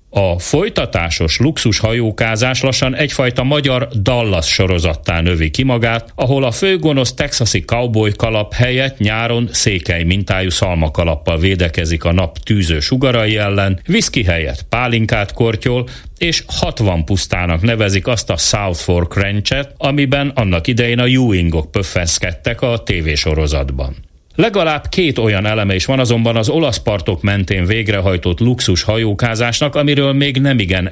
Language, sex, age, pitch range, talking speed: Hungarian, male, 40-59, 90-125 Hz, 135 wpm